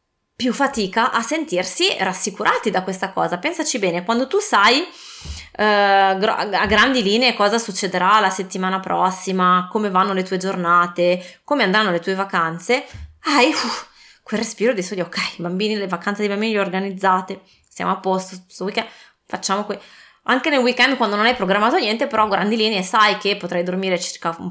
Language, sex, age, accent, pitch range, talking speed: Italian, female, 20-39, native, 185-235 Hz, 175 wpm